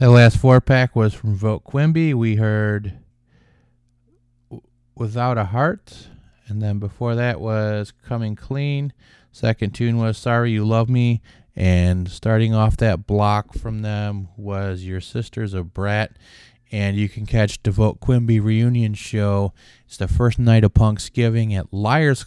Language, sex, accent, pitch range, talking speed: English, male, American, 95-120 Hz, 150 wpm